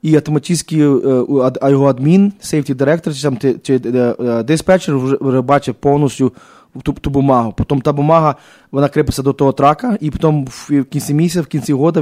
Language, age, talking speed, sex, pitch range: English, 20-39, 160 wpm, male, 120-145 Hz